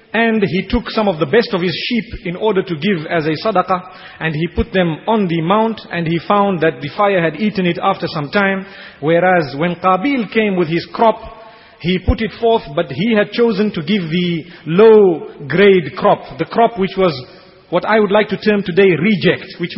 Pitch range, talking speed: 175-220 Hz, 210 wpm